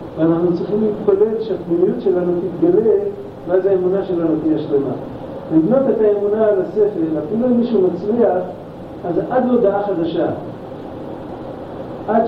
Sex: male